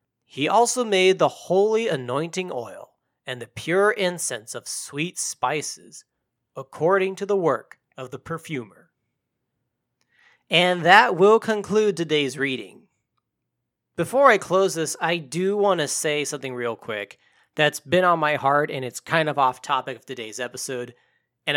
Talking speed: 150 wpm